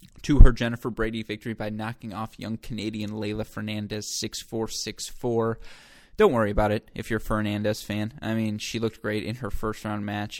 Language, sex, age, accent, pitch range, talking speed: English, male, 20-39, American, 105-115 Hz, 190 wpm